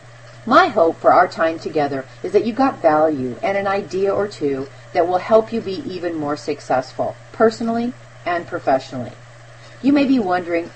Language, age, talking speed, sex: English, 40-59, 175 wpm, female